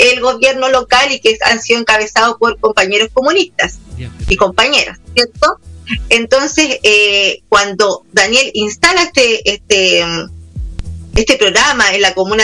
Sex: female